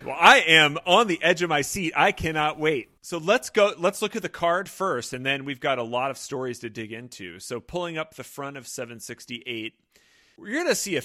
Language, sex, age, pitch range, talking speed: English, male, 30-49, 125-175 Hz, 240 wpm